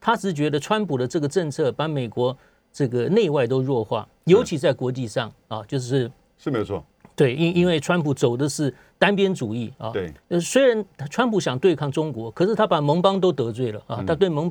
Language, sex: Chinese, male